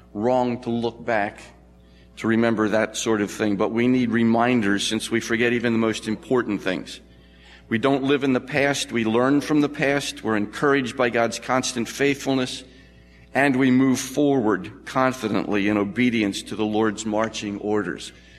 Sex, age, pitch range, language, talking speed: male, 50-69, 110-130 Hz, English, 165 wpm